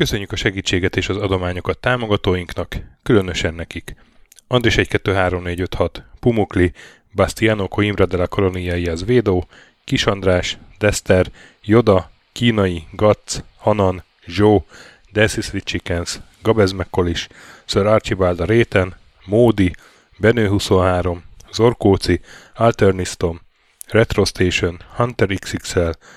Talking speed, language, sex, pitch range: 85 wpm, Hungarian, male, 90-110 Hz